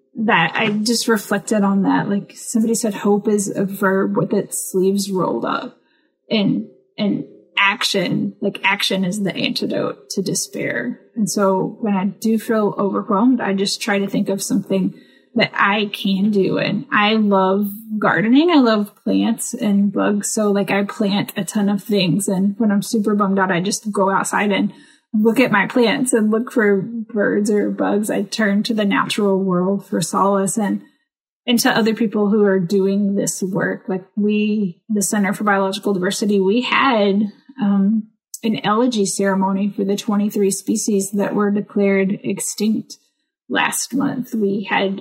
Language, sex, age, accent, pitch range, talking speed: English, female, 10-29, American, 195-220 Hz, 170 wpm